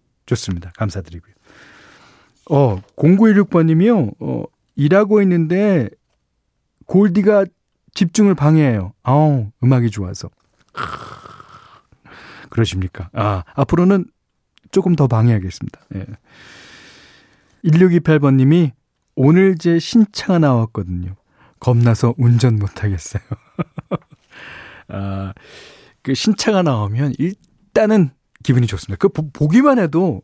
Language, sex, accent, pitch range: Korean, male, native, 105-180 Hz